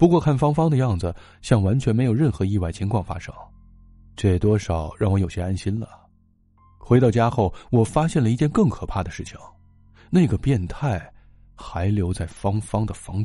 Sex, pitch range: male, 90-125 Hz